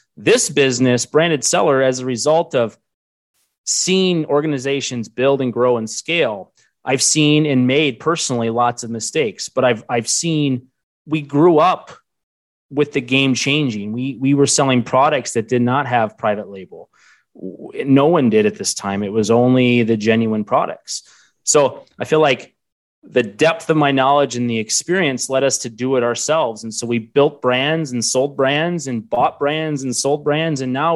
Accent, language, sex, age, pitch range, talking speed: American, English, male, 30-49, 120-155 Hz, 175 wpm